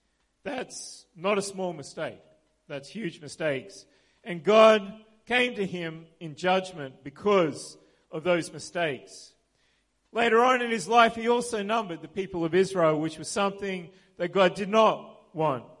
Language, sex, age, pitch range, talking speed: English, male, 40-59, 165-210 Hz, 150 wpm